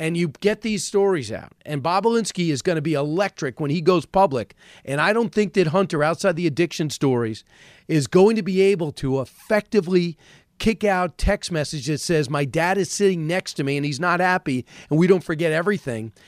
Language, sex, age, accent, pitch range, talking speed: English, male, 40-59, American, 140-190 Hz, 205 wpm